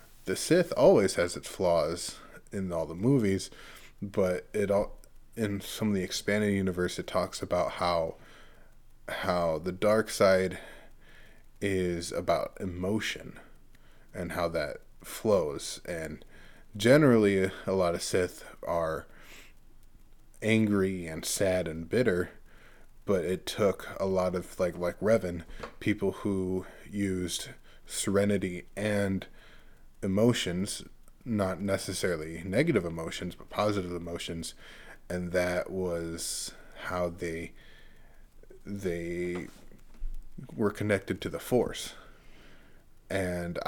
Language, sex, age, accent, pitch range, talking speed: English, male, 20-39, American, 85-100 Hz, 110 wpm